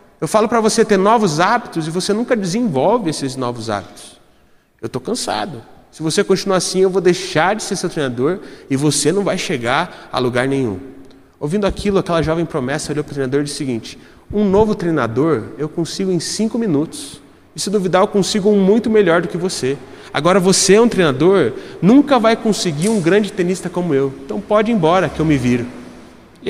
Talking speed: 205 wpm